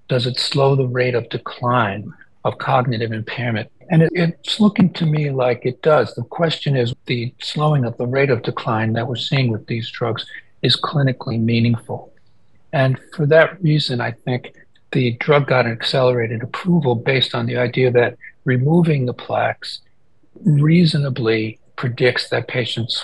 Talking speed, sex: 160 wpm, male